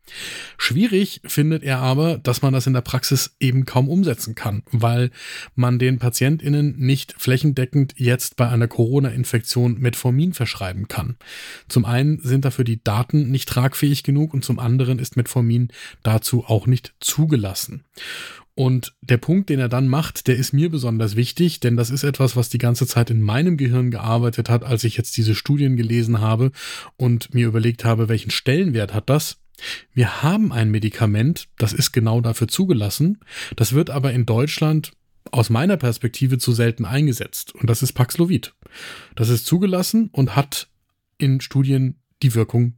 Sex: male